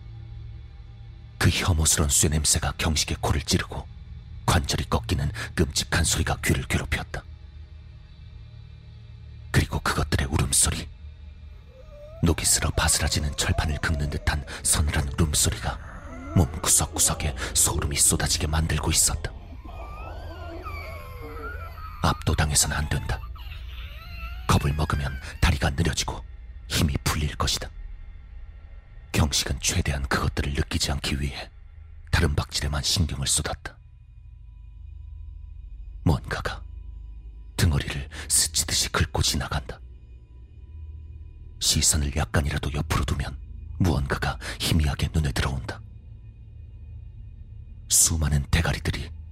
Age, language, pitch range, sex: 40-59, Korean, 75-85 Hz, male